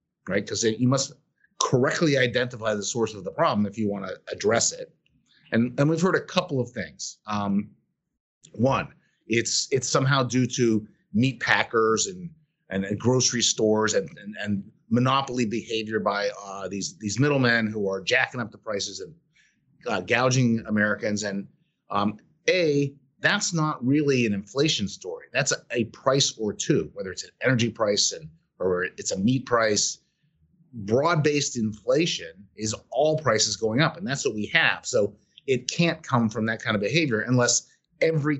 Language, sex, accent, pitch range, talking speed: English, male, American, 110-145 Hz, 165 wpm